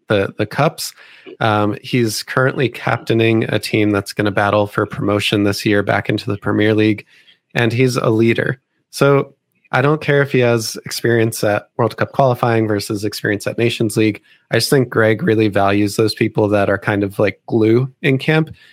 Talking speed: 190 wpm